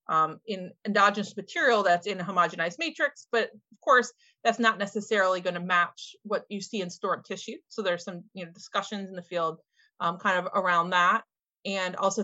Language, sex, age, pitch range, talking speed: English, female, 30-49, 185-235 Hz, 185 wpm